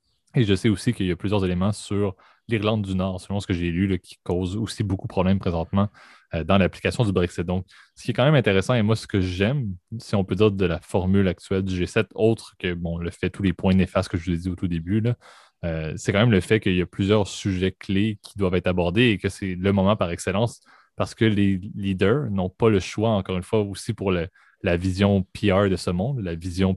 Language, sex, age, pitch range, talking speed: French, male, 20-39, 90-105 Hz, 260 wpm